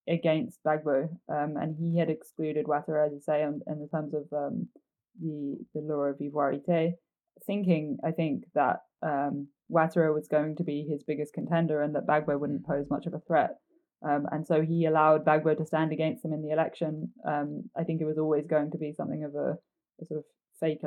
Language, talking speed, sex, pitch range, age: English, 205 wpm, female, 150-170 Hz, 20-39